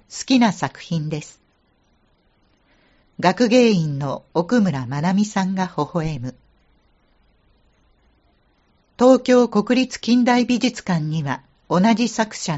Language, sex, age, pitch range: Japanese, female, 50-69, 140-225 Hz